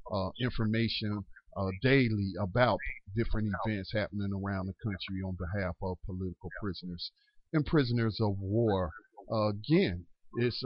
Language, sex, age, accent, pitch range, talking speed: English, male, 50-69, American, 105-130 Hz, 130 wpm